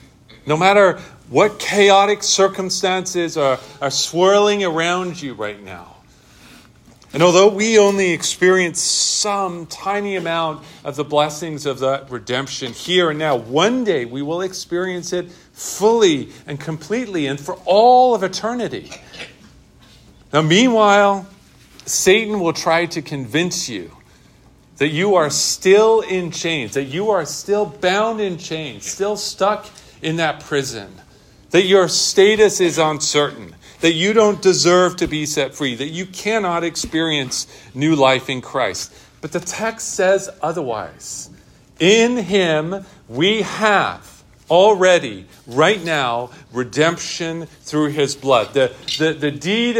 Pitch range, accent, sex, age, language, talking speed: 145-200 Hz, American, male, 40-59, English, 135 wpm